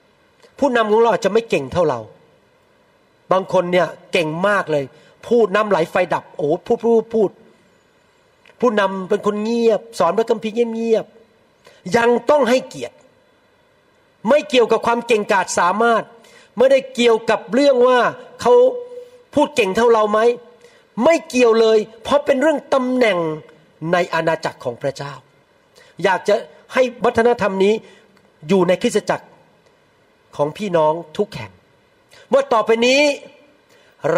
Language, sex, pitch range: Thai, male, 185-270 Hz